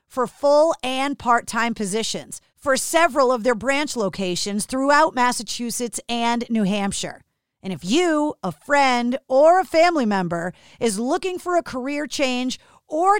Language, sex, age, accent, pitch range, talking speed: English, female, 40-59, American, 220-290 Hz, 145 wpm